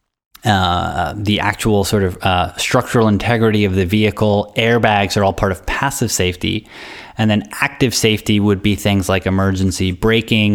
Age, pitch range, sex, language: 20-39, 95-115 Hz, male, English